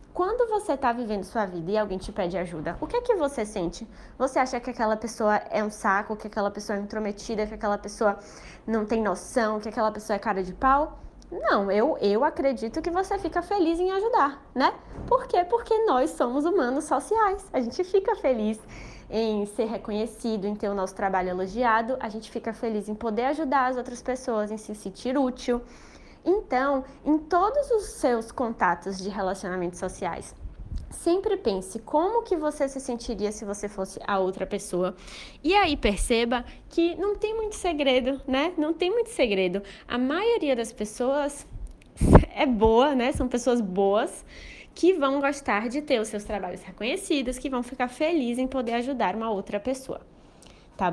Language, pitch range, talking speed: Portuguese, 210-295 Hz, 180 wpm